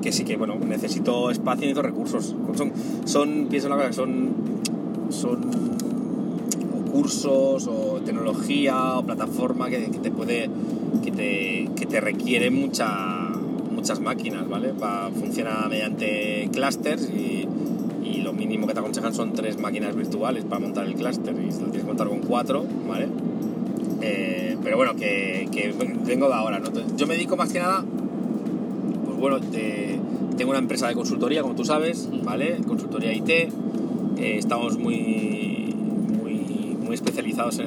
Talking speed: 150 wpm